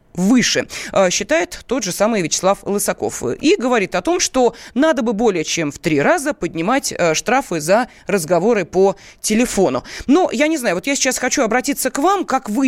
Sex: female